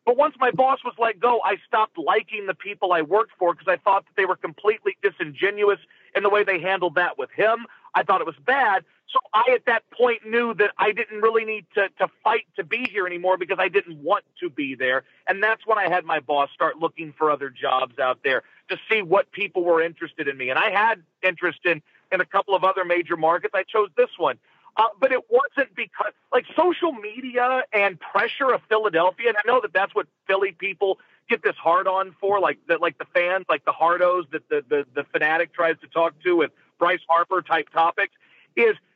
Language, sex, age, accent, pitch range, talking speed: English, male, 40-59, American, 185-275 Hz, 225 wpm